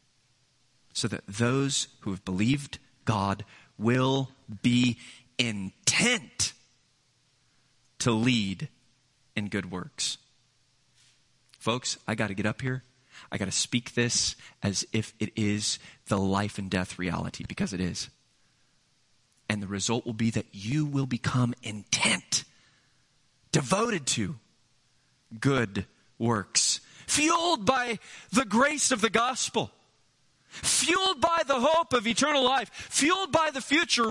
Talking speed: 125 wpm